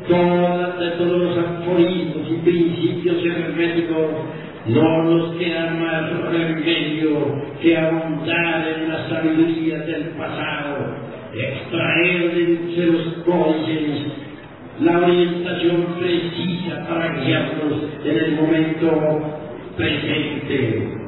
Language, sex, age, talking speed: Spanish, male, 50-69, 100 wpm